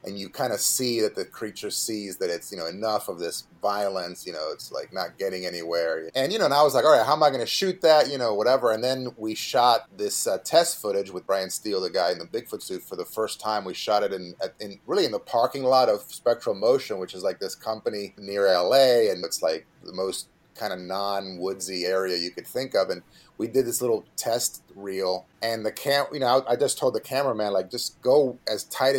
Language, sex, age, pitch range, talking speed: English, male, 30-49, 100-140 Hz, 250 wpm